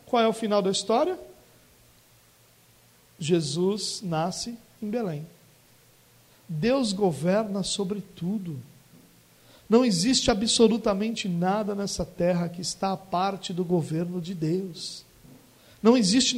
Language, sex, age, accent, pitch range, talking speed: Portuguese, male, 50-69, Brazilian, 170-225 Hz, 110 wpm